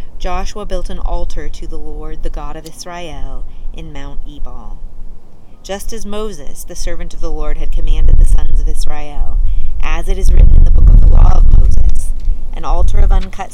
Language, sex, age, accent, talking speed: English, female, 30-49, American, 195 wpm